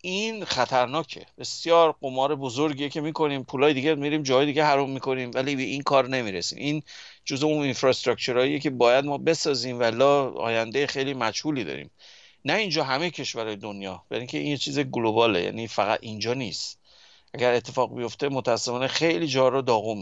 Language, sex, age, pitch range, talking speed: Persian, male, 50-69, 120-150 Hz, 160 wpm